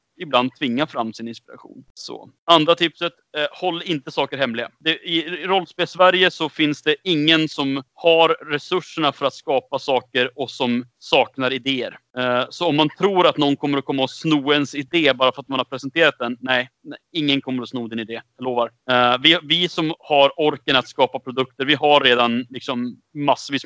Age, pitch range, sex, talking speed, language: 30-49, 125-155 Hz, male, 195 wpm, Swedish